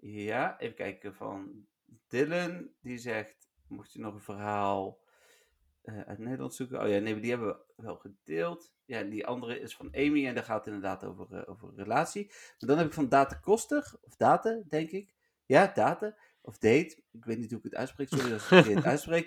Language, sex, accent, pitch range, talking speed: Dutch, male, Dutch, 105-145 Hz, 205 wpm